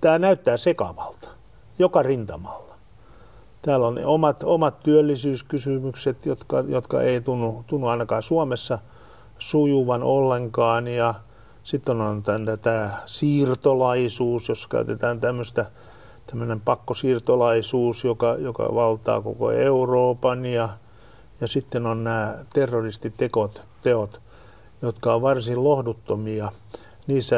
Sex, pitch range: male, 110-130 Hz